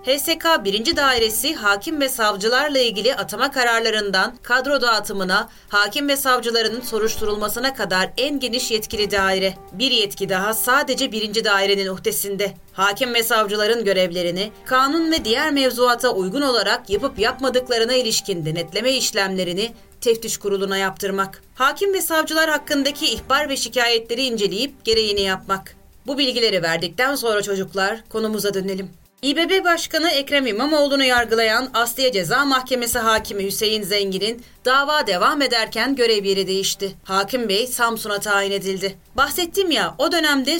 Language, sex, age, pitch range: Turkish, female, 30-49, 200-260 Hz